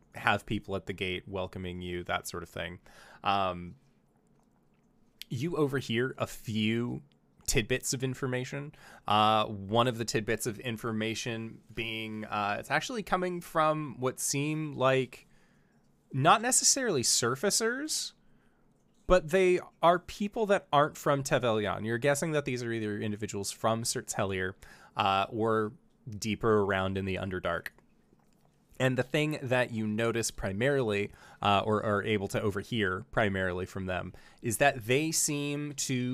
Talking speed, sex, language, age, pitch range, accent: 140 wpm, male, English, 20-39, 105-145 Hz, American